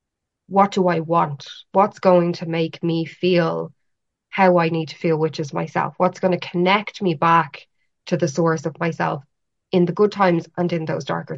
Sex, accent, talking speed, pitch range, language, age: female, Irish, 195 wpm, 160-185 Hz, English, 20-39